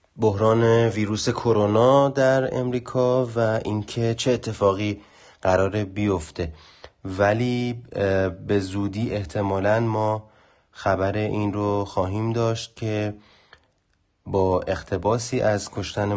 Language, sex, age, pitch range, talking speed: Persian, male, 30-49, 95-115 Hz, 95 wpm